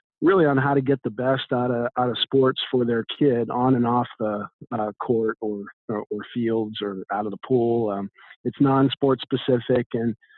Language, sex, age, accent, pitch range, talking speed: English, male, 50-69, American, 110-130 Hz, 210 wpm